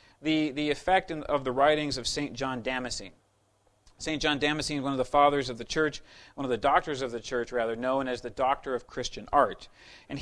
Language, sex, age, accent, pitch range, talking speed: English, male, 40-59, American, 120-155 Hz, 215 wpm